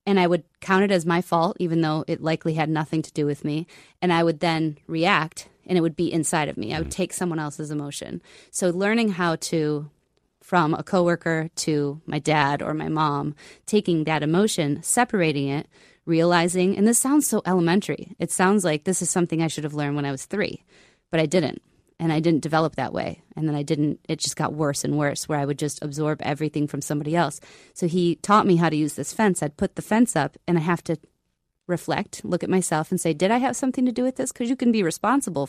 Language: English